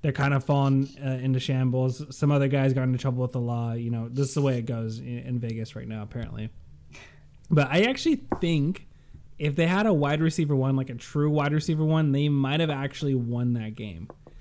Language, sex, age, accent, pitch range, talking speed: English, male, 20-39, American, 120-140 Hz, 220 wpm